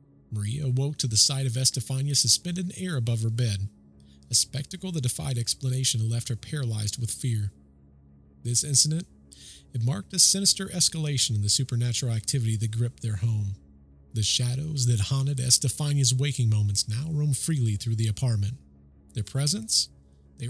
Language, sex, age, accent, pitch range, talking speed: English, male, 40-59, American, 105-140 Hz, 160 wpm